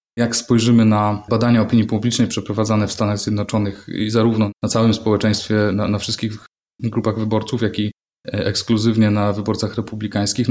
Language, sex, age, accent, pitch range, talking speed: Polish, male, 20-39, native, 105-120 Hz, 150 wpm